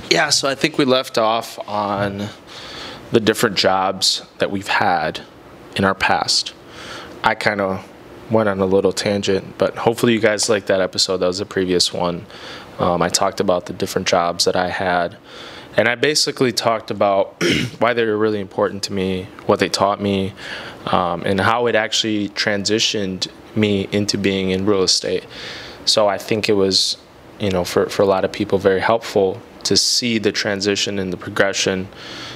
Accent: American